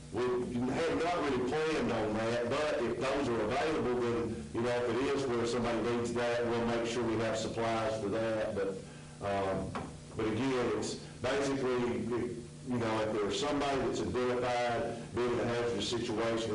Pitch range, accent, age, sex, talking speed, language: 100-120 Hz, American, 50-69, male, 175 wpm, English